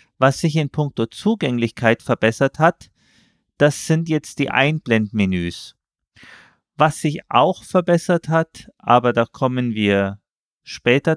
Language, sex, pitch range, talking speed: German, male, 115-160 Hz, 120 wpm